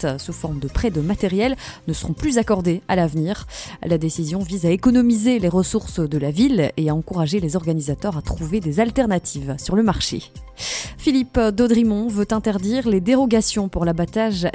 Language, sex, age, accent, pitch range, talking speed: French, female, 30-49, French, 165-220 Hz, 175 wpm